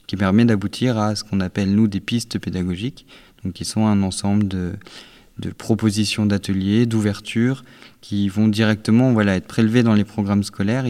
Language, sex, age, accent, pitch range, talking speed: French, male, 20-39, French, 95-110 Hz, 170 wpm